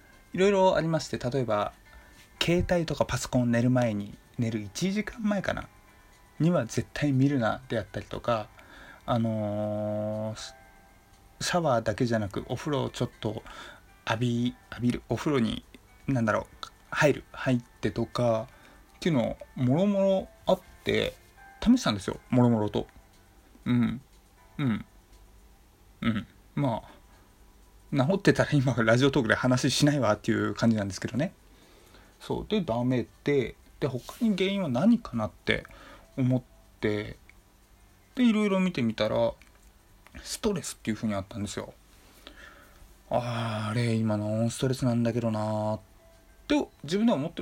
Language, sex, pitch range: Japanese, male, 105-145 Hz